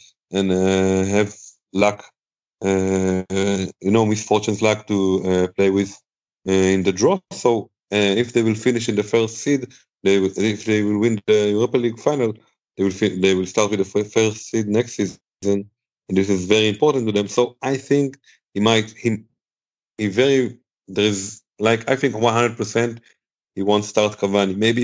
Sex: male